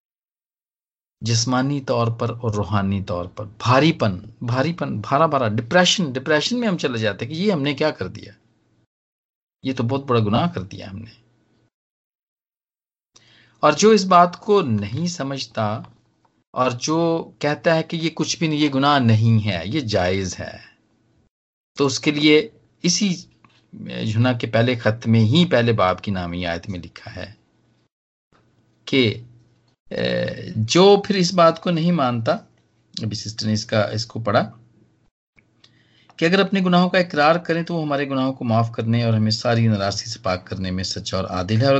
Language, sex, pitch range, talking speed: English, male, 105-150 Hz, 160 wpm